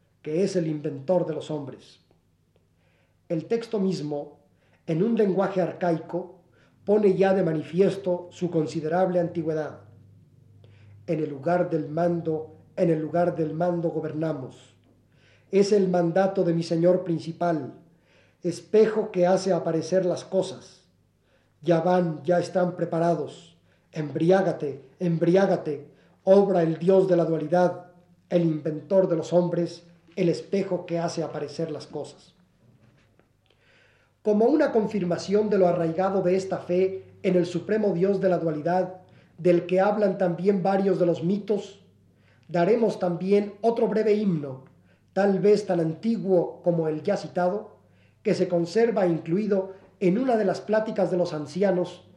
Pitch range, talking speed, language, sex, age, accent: 160-190 Hz, 135 wpm, Spanish, male, 40-59, Mexican